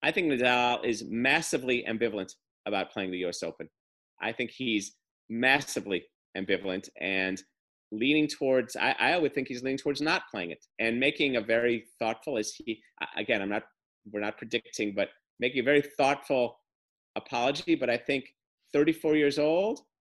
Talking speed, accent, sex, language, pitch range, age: 160 wpm, American, male, English, 130-170 Hz, 40-59